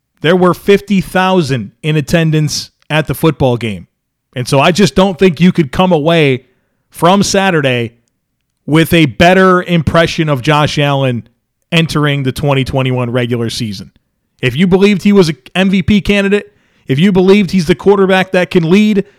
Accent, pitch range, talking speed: American, 140-185 Hz, 155 wpm